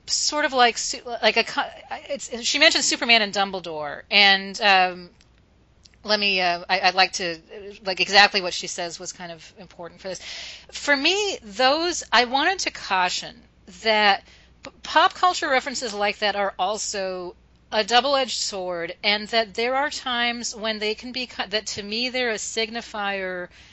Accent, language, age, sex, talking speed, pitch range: American, English, 40-59, female, 160 wpm, 195-260 Hz